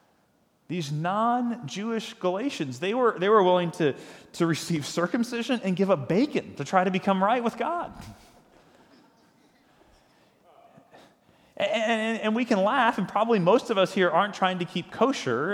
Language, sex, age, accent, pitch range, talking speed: English, male, 30-49, American, 135-200 Hz, 155 wpm